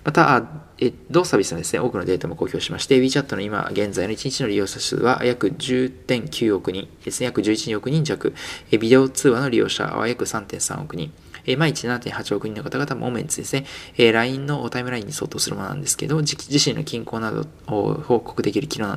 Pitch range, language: 120-150 Hz, Japanese